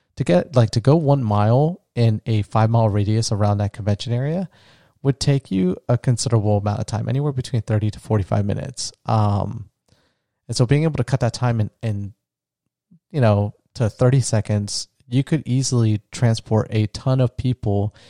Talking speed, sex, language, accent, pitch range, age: 180 wpm, male, English, American, 105-125 Hz, 30-49